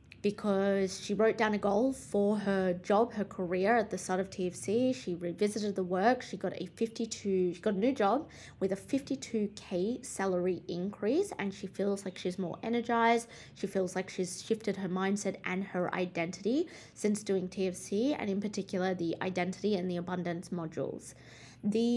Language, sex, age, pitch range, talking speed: English, female, 20-39, 185-220 Hz, 175 wpm